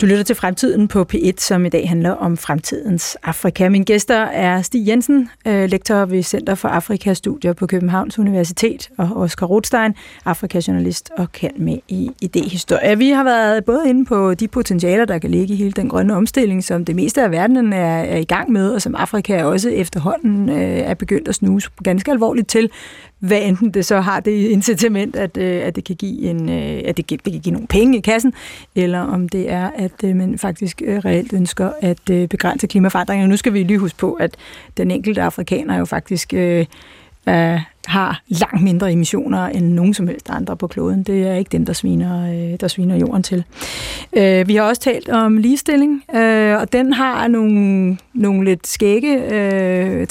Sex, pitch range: female, 185-220 Hz